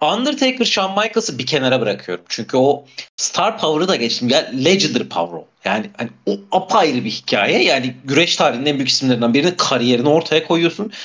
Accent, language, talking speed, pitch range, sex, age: native, Turkish, 165 wpm, 125-185 Hz, male, 40-59